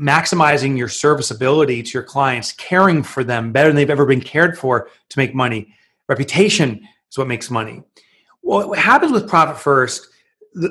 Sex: male